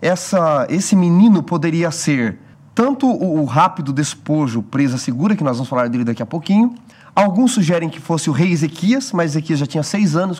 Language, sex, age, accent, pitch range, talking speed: Portuguese, male, 30-49, Brazilian, 135-180 Hz, 185 wpm